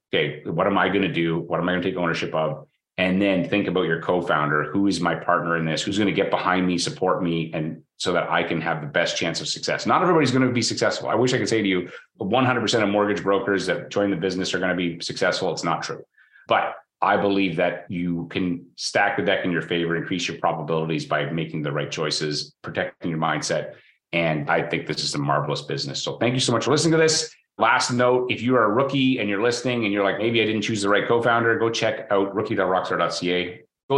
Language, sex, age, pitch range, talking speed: English, male, 30-49, 85-105 Hz, 245 wpm